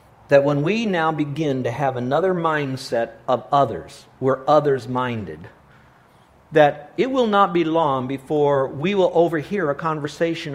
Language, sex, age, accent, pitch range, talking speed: English, male, 50-69, American, 125-170 Hz, 140 wpm